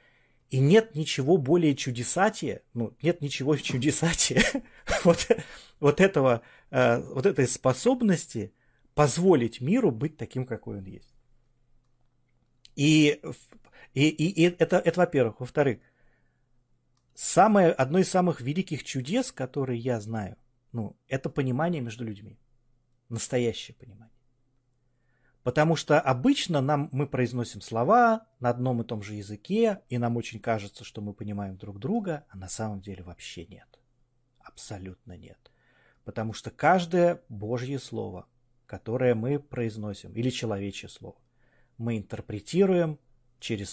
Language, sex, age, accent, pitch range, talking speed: Russian, male, 30-49, native, 110-150 Hz, 120 wpm